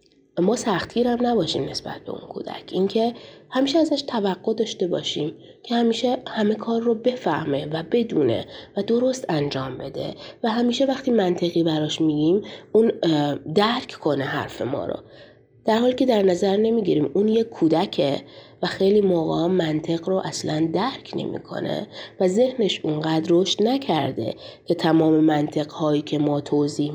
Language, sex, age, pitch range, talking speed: Persian, female, 30-49, 155-225 Hz, 145 wpm